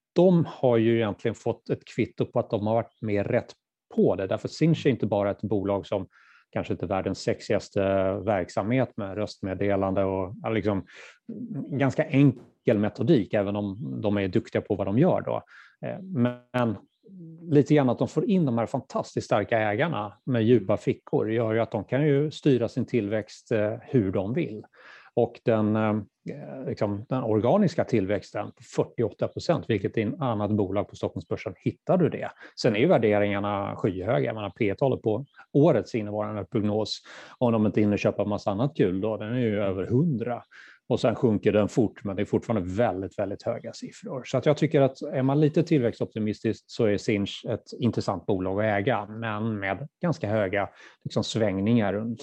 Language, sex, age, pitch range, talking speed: Swedish, male, 30-49, 105-130 Hz, 180 wpm